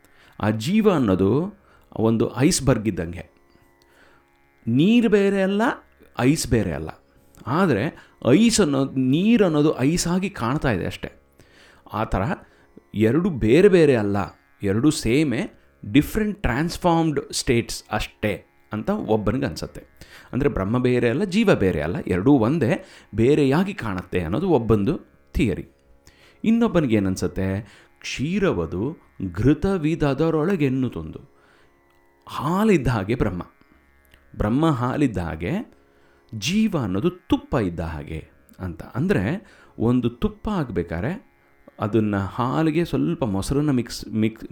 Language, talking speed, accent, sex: Kannada, 100 wpm, native, male